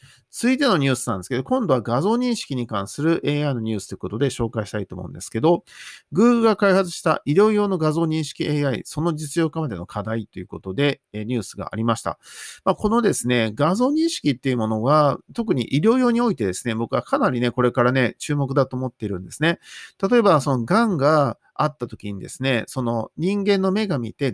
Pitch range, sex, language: 115-175 Hz, male, Japanese